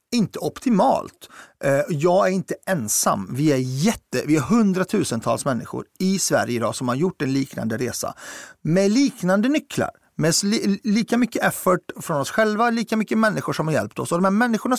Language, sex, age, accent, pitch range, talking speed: Swedish, male, 40-59, native, 145-220 Hz, 175 wpm